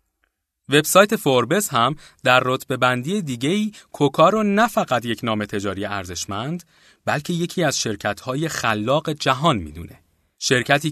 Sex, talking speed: male, 120 wpm